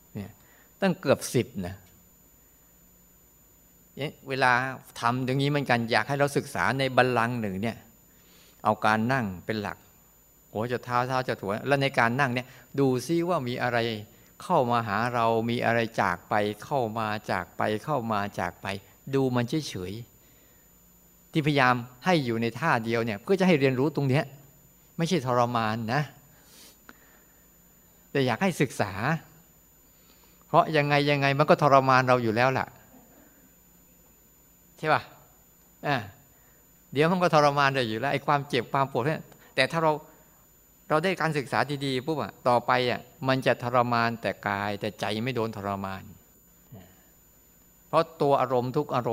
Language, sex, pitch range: Thai, male, 115-145 Hz